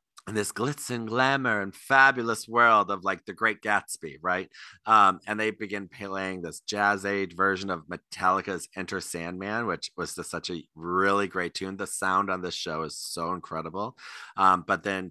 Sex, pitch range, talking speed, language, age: male, 85-105 Hz, 185 wpm, English, 30-49